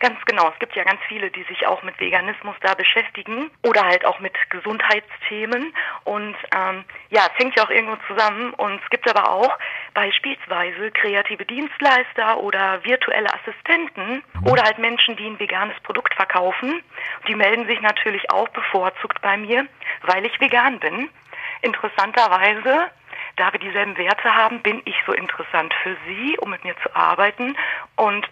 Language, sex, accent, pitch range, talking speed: German, female, German, 195-235 Hz, 165 wpm